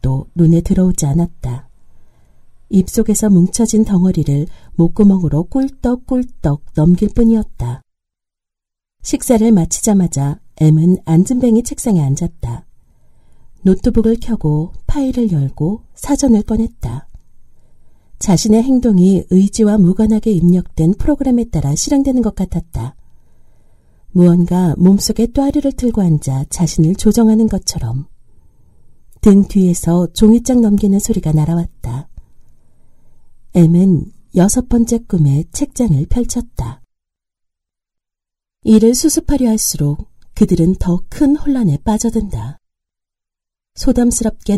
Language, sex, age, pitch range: Korean, female, 40-59, 155-220 Hz